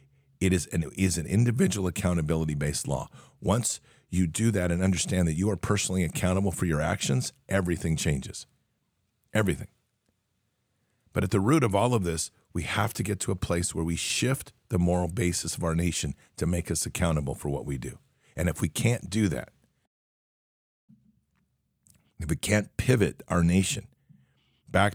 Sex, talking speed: male, 165 wpm